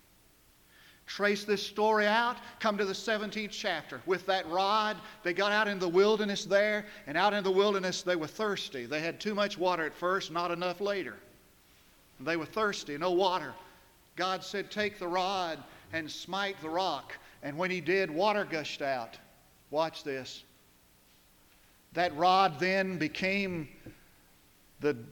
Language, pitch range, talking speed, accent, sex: English, 150-200 Hz, 155 wpm, American, male